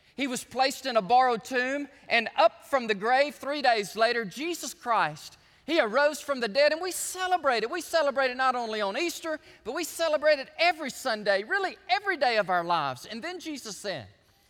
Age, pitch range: 30-49, 200-300 Hz